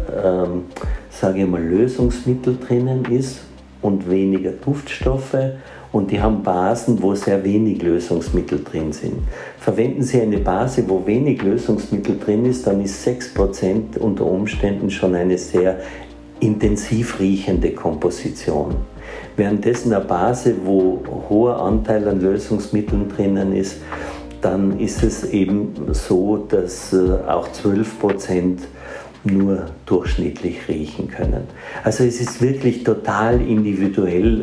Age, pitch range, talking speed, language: 50-69, 90-110 Hz, 120 wpm, German